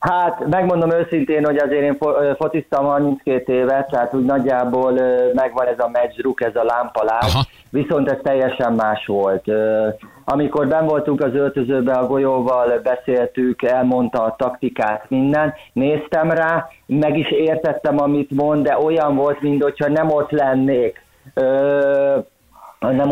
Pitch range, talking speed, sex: 120-145 Hz, 130 wpm, male